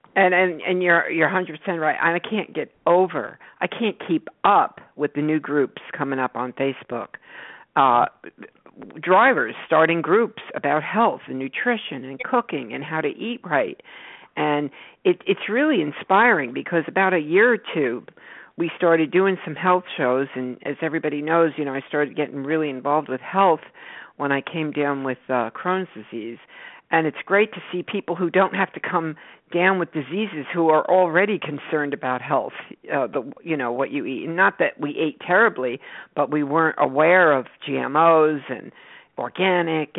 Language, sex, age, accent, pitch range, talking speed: English, female, 50-69, American, 145-180 Hz, 175 wpm